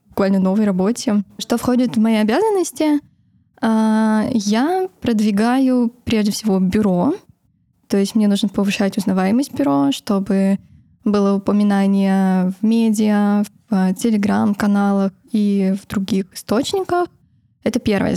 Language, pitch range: Russian, 200-235 Hz